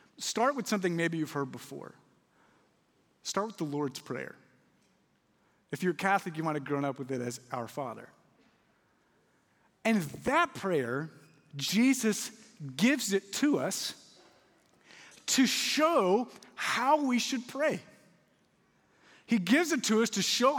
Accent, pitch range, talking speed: American, 160-220 Hz, 135 wpm